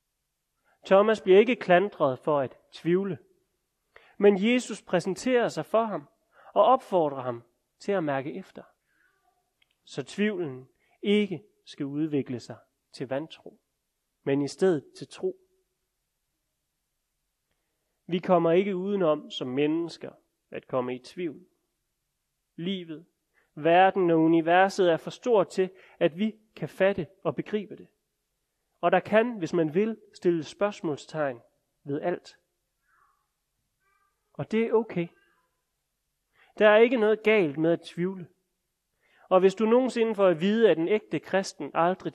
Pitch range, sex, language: 160-210 Hz, male, Danish